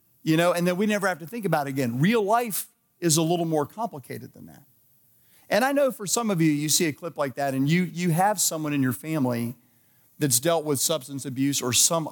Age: 40-59